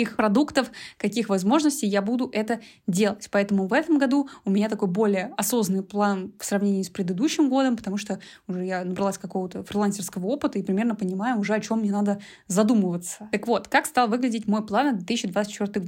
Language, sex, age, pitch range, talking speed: Russian, female, 20-39, 195-235 Hz, 180 wpm